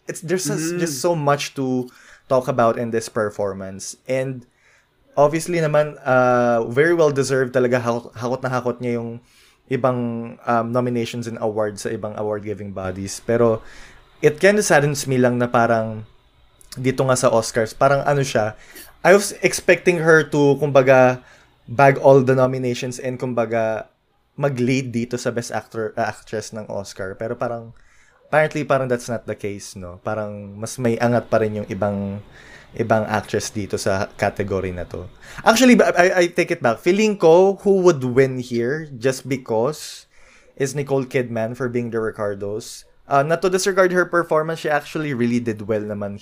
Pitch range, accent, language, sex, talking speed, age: 110-140 Hz, native, Filipino, male, 165 wpm, 20-39